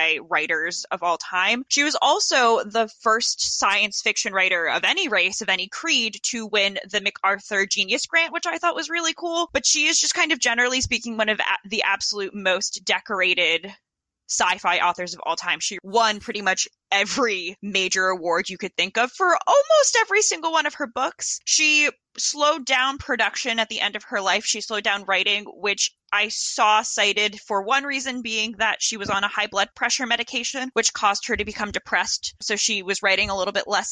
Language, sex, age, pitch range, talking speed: English, female, 20-39, 195-245 Hz, 200 wpm